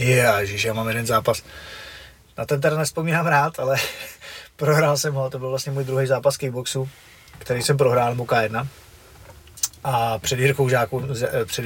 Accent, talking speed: native, 155 wpm